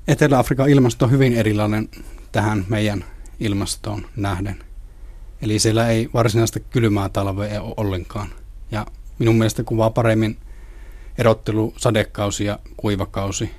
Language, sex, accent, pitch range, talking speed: Finnish, male, native, 100-115 Hz, 115 wpm